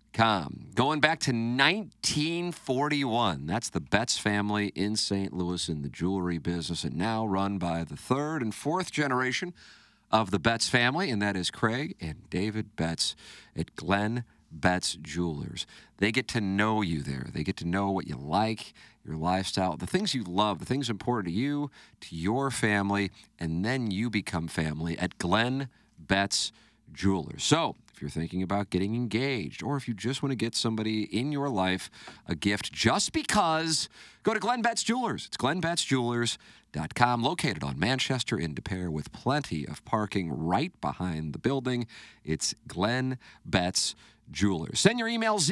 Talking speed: 165 wpm